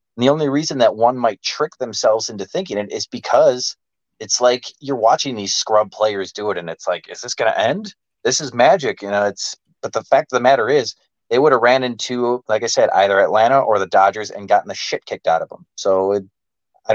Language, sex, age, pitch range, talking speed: English, male, 30-49, 105-140 Hz, 240 wpm